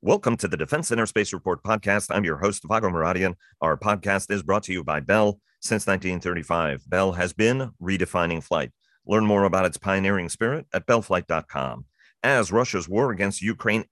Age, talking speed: 40-59, 175 wpm